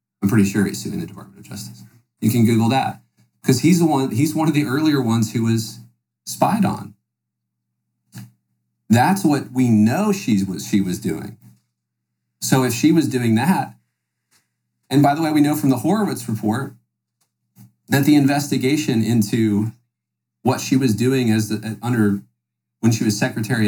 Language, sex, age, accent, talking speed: English, male, 40-59, American, 165 wpm